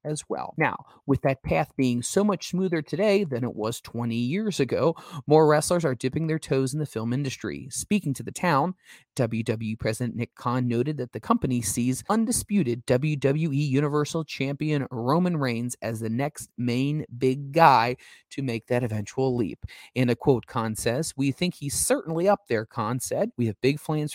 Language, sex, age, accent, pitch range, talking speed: English, male, 30-49, American, 115-150 Hz, 185 wpm